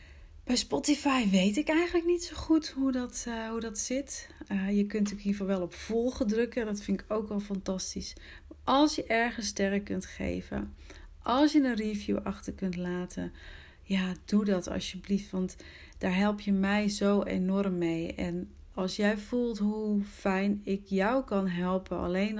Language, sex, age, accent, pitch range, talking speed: Dutch, female, 40-59, Dutch, 185-215 Hz, 180 wpm